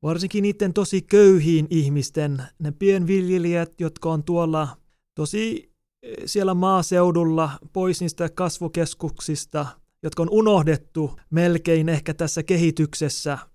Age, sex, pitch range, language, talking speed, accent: 30-49, male, 155-190 Hz, Finnish, 100 wpm, native